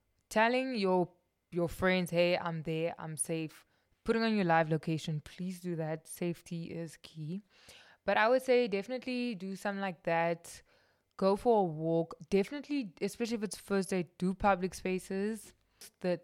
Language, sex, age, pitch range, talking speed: English, female, 20-39, 165-220 Hz, 160 wpm